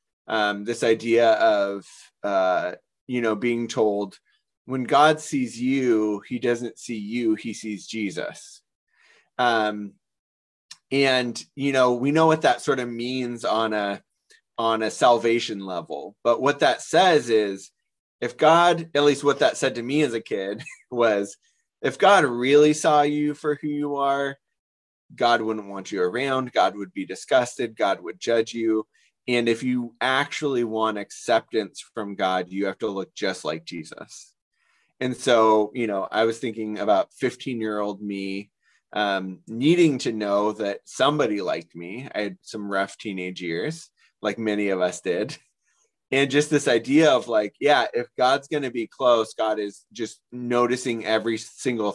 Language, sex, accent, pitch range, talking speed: English, male, American, 105-135 Hz, 165 wpm